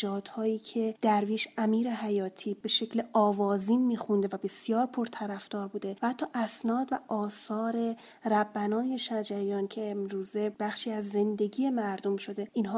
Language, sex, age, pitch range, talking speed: Persian, female, 30-49, 205-230 Hz, 130 wpm